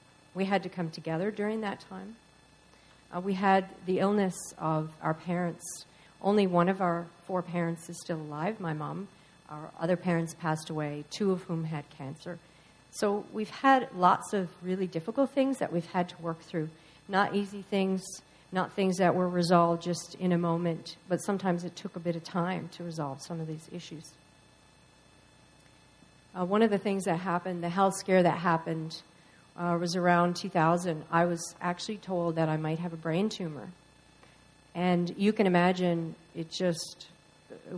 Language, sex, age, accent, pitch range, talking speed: English, female, 50-69, American, 165-195 Hz, 180 wpm